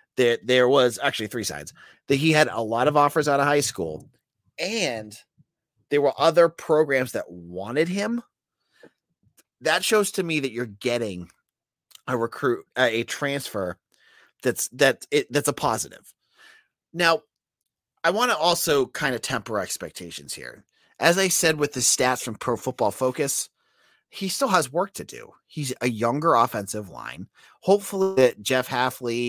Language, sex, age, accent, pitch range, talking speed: English, male, 30-49, American, 115-155 Hz, 160 wpm